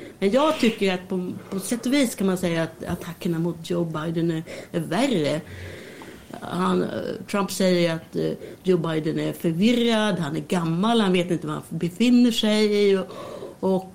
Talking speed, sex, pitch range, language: 175 wpm, female, 170-210 Hz, Swedish